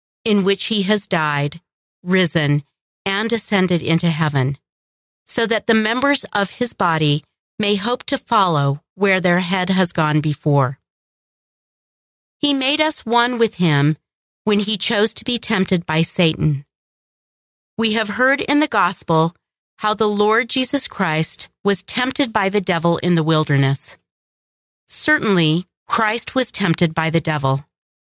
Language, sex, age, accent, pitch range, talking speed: English, female, 40-59, American, 160-225 Hz, 145 wpm